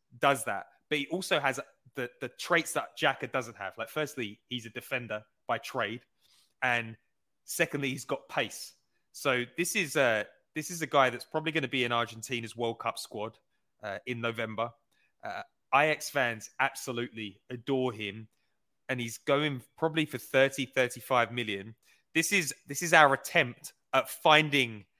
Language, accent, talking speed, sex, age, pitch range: English, British, 165 wpm, male, 20-39, 120-150 Hz